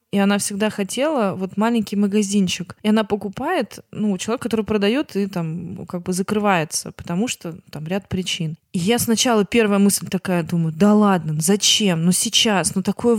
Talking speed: 175 wpm